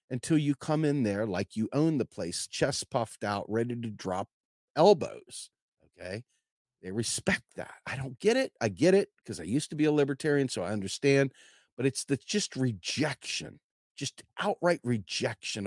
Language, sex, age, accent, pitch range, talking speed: English, male, 40-59, American, 120-170 Hz, 175 wpm